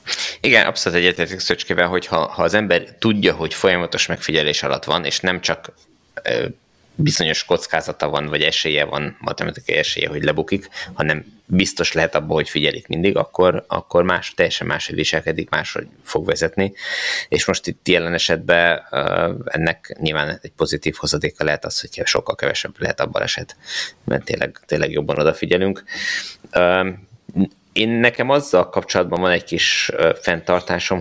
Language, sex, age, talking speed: Hungarian, male, 20-39, 150 wpm